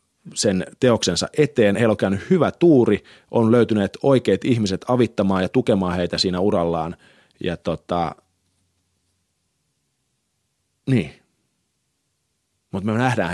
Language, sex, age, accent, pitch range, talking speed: Finnish, male, 30-49, native, 90-120 Hz, 100 wpm